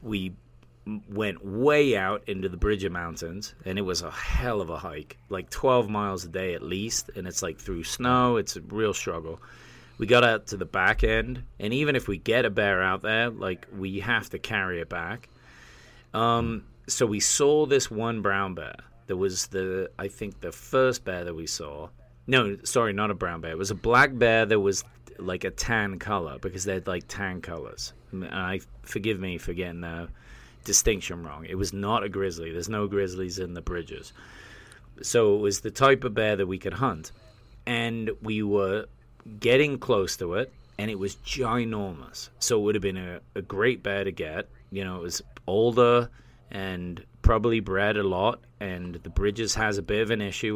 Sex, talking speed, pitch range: male, 200 wpm, 95-115 Hz